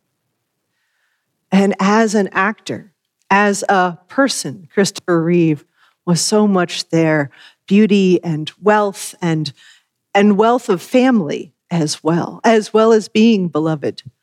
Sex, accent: female, American